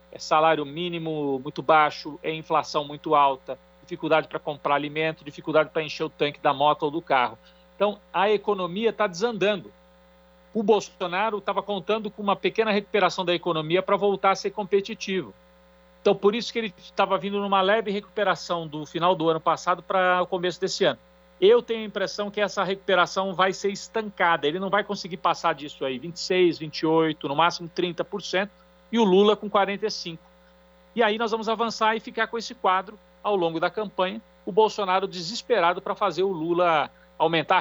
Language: Portuguese